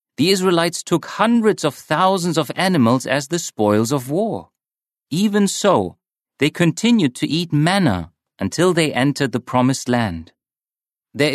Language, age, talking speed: English, 40-59, 145 wpm